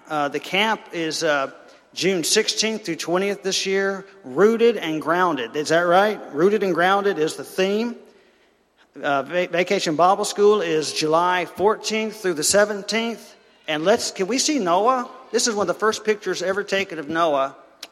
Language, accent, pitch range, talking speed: English, American, 155-195 Hz, 165 wpm